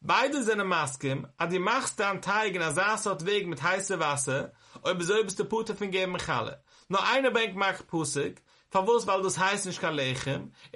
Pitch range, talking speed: 150-205 Hz, 205 wpm